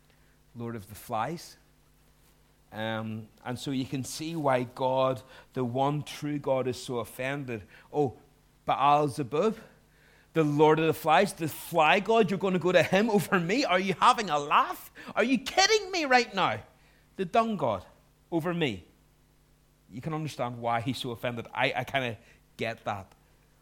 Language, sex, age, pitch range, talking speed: English, male, 40-59, 120-155 Hz, 170 wpm